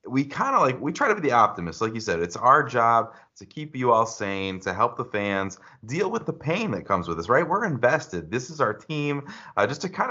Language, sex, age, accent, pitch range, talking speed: English, male, 30-49, American, 95-125 Hz, 260 wpm